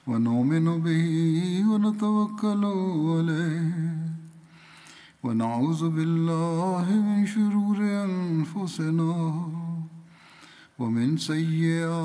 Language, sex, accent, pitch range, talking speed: Turkish, male, Indian, 165-205 Hz, 65 wpm